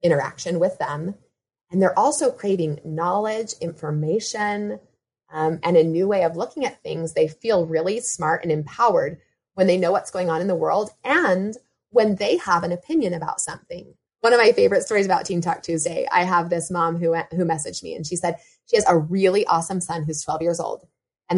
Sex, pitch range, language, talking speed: female, 165-225 Hz, English, 200 wpm